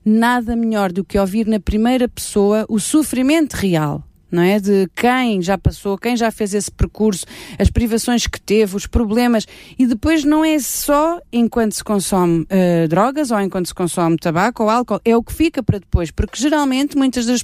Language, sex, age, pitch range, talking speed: Portuguese, female, 30-49, 200-250 Hz, 180 wpm